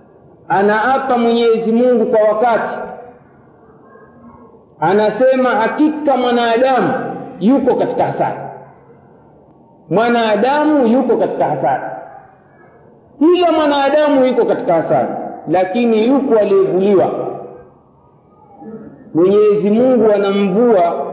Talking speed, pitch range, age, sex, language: 75 wpm, 210-270 Hz, 50-69, male, Swahili